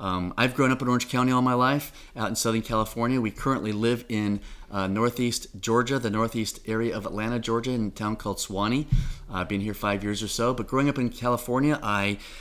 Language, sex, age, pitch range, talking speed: English, male, 30-49, 95-115 Hz, 220 wpm